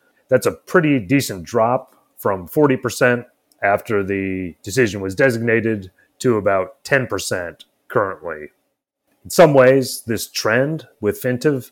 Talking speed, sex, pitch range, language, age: 120 wpm, male, 100-125 Hz, English, 30-49